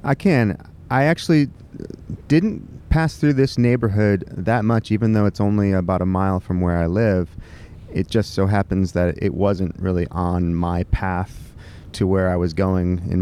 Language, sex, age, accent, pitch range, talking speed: English, male, 30-49, American, 90-110 Hz, 175 wpm